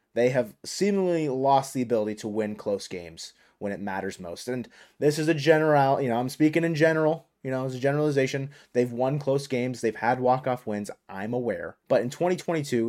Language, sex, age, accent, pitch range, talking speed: English, male, 30-49, American, 110-140 Hz, 200 wpm